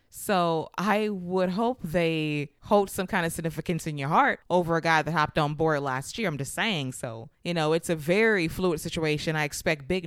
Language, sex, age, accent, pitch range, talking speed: English, female, 20-39, American, 160-195 Hz, 215 wpm